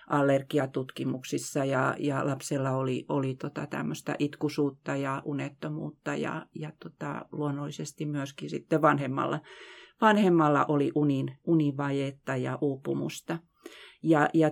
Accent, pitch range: native, 140-165 Hz